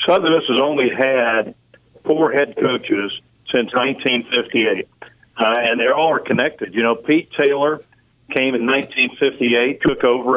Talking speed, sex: 150 wpm, male